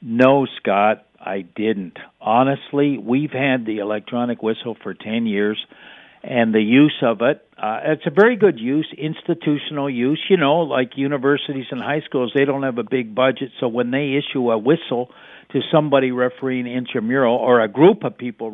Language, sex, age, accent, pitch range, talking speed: English, male, 60-79, American, 120-145 Hz, 175 wpm